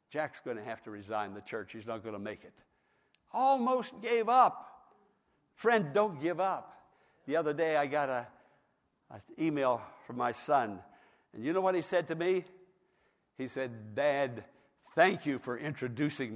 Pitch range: 115-145 Hz